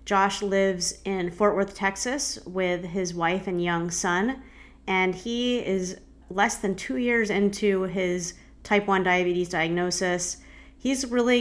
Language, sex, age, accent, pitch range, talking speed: English, female, 30-49, American, 170-195 Hz, 140 wpm